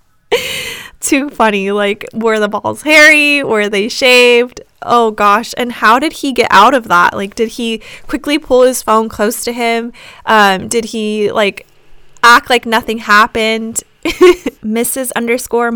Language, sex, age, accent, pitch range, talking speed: English, female, 10-29, American, 215-275 Hz, 150 wpm